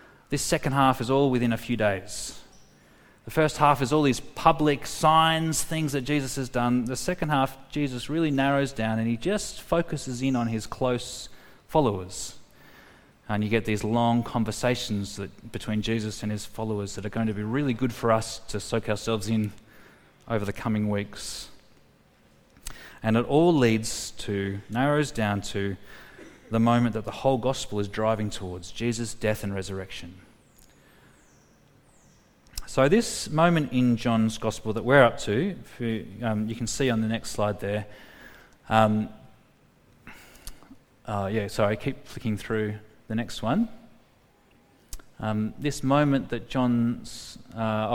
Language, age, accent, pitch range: English, 30-49, Australian, 110-135 Hz